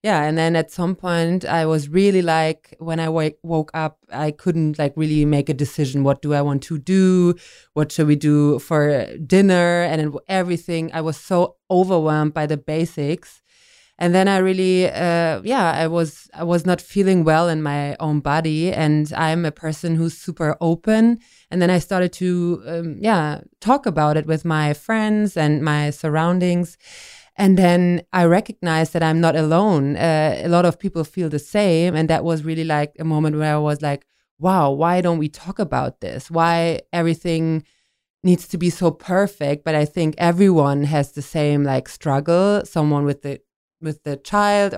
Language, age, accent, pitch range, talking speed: English, 20-39, German, 150-180 Hz, 185 wpm